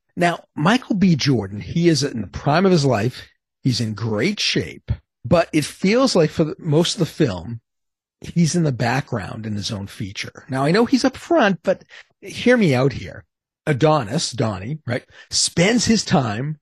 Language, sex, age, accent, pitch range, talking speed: English, male, 40-59, American, 120-170 Hz, 180 wpm